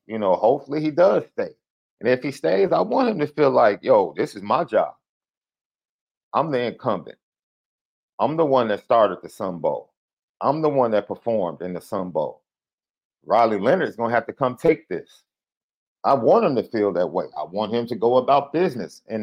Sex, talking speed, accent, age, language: male, 205 wpm, American, 40-59, English